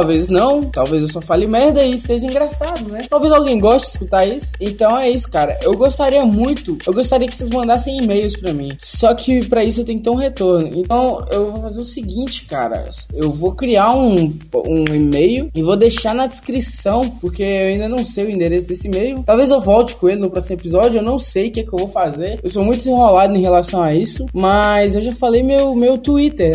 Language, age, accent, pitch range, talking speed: Portuguese, 10-29, Brazilian, 175-240 Hz, 225 wpm